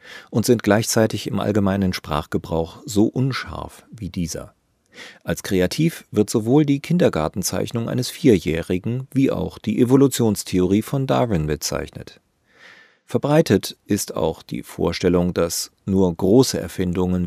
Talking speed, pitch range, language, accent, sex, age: 120 wpm, 85-120 Hz, German, German, male, 40-59